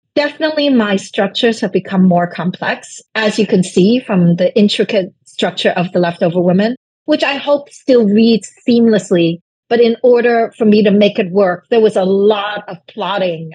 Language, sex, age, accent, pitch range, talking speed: English, female, 50-69, American, 180-225 Hz, 175 wpm